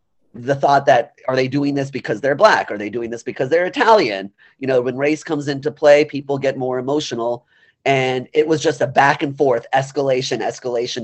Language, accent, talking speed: English, American, 205 wpm